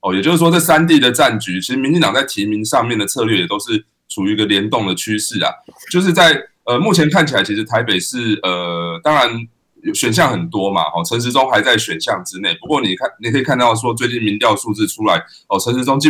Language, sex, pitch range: Chinese, male, 105-155 Hz